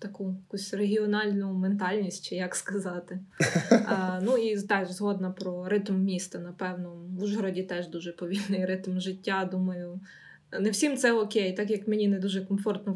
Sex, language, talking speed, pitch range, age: female, Ukrainian, 155 wpm, 185-210 Hz, 20-39